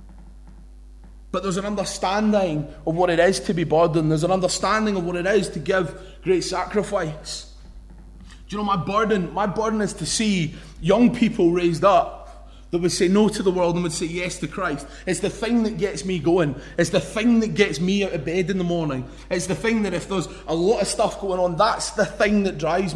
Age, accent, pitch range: 20-39, British, 160-200 Hz